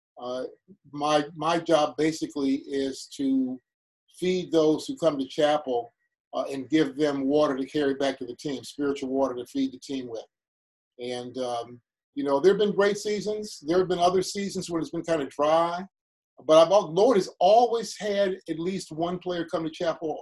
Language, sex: English, male